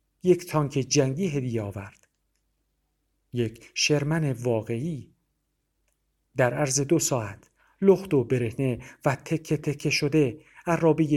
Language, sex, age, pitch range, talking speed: Persian, male, 50-69, 110-145 Hz, 105 wpm